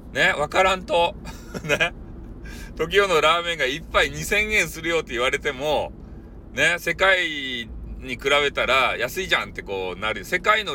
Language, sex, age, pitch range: Japanese, male, 40-59, 130-210 Hz